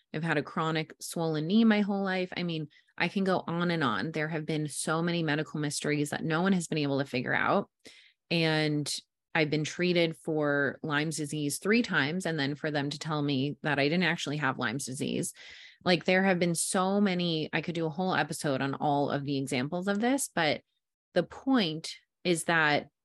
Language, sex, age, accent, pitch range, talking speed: English, female, 30-49, American, 145-175 Hz, 210 wpm